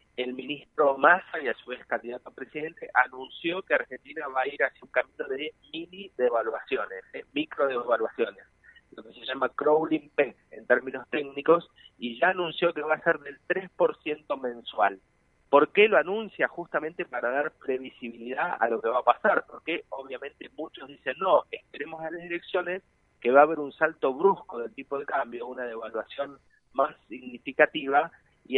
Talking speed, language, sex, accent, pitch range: 170 wpm, Spanish, male, Argentinian, 130-180 Hz